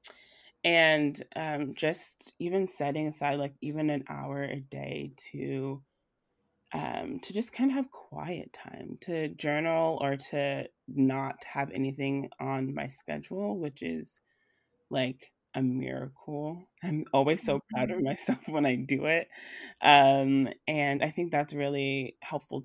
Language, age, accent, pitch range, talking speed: English, 20-39, American, 135-155 Hz, 140 wpm